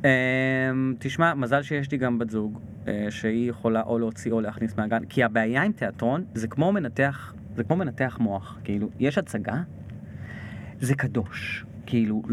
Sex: male